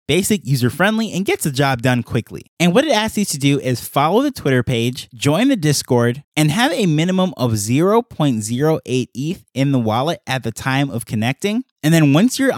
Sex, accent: male, American